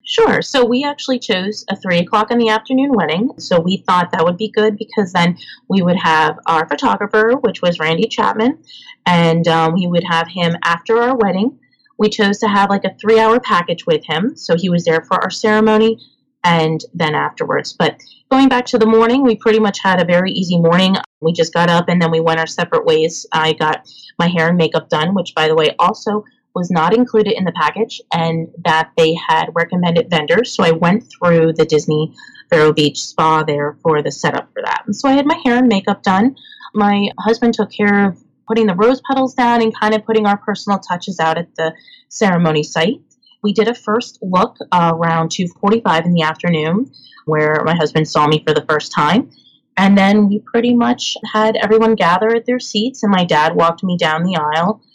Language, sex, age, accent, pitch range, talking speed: English, female, 30-49, American, 165-225 Hz, 210 wpm